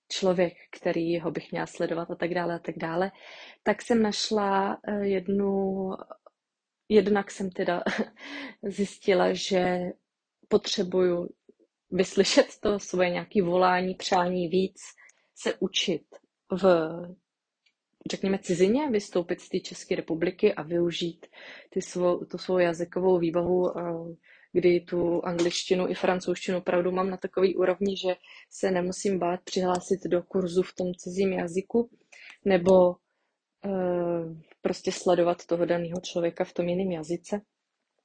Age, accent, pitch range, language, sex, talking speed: 20-39, native, 175-200 Hz, Czech, female, 125 wpm